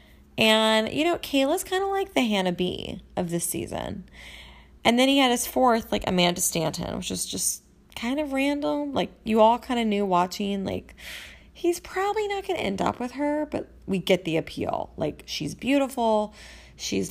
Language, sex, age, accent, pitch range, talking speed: English, female, 20-39, American, 175-270 Hz, 190 wpm